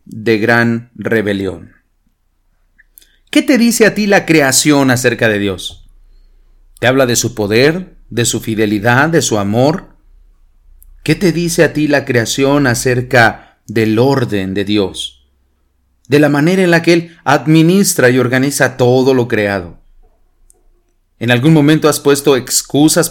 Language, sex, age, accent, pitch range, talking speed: English, male, 40-59, Mexican, 100-155 Hz, 145 wpm